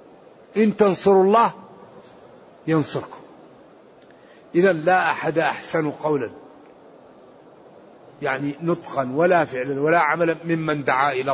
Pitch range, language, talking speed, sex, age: 150-200 Hz, Arabic, 95 wpm, male, 50-69